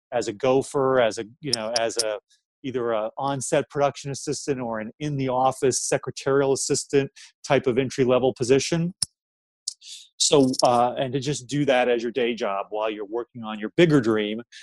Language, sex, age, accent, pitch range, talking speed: English, male, 30-49, American, 115-145 Hz, 170 wpm